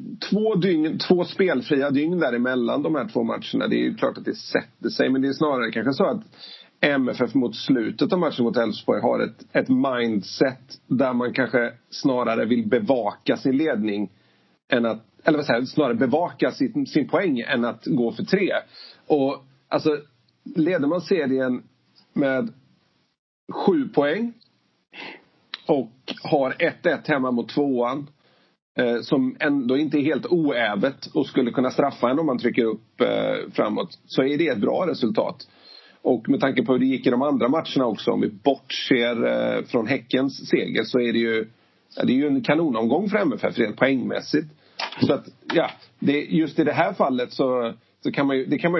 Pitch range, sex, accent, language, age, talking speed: 125-175 Hz, male, native, Swedish, 40-59, 165 wpm